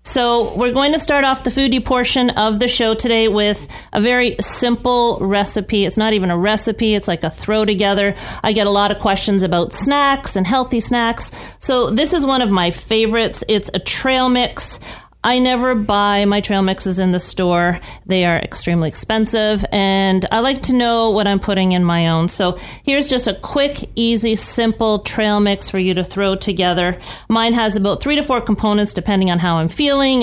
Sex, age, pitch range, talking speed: female, 40-59, 190-235 Hz, 200 wpm